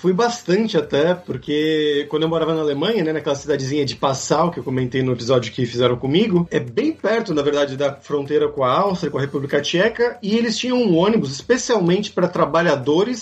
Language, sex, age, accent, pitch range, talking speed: Portuguese, male, 30-49, Brazilian, 155-200 Hz, 200 wpm